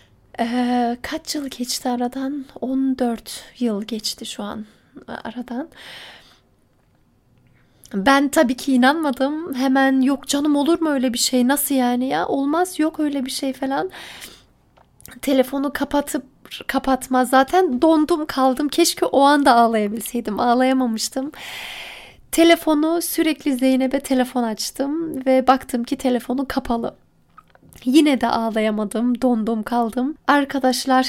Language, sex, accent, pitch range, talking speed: Turkish, female, native, 240-275 Hz, 110 wpm